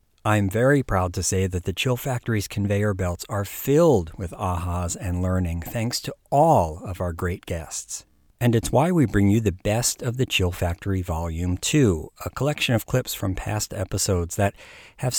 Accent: American